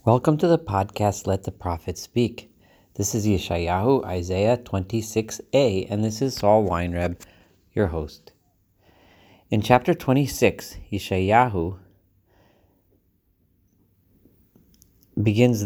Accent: American